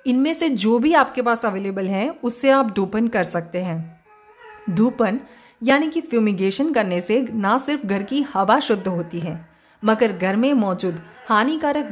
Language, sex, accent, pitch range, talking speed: Hindi, female, native, 190-255 Hz, 165 wpm